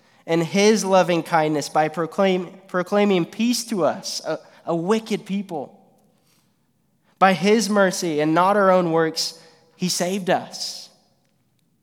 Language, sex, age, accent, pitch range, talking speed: English, male, 20-39, American, 160-200 Hz, 120 wpm